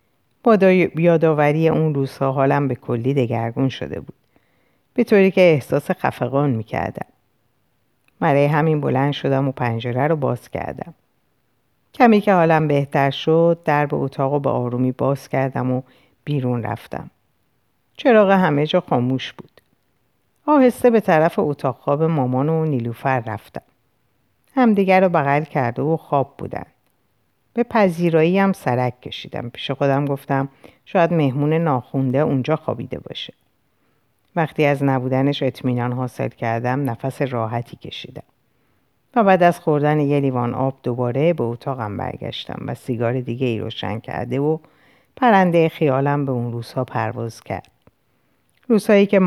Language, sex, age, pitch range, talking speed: Persian, female, 50-69, 125-160 Hz, 140 wpm